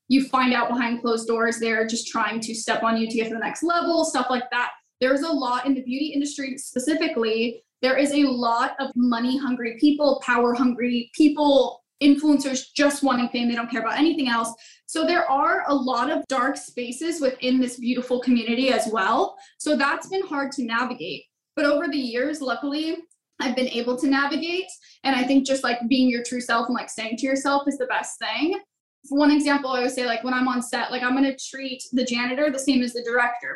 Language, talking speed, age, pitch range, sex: English, 215 wpm, 10-29, 240-285 Hz, female